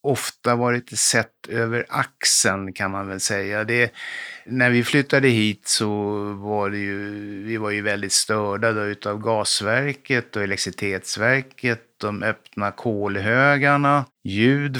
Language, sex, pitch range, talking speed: Swedish, male, 100-130 Hz, 125 wpm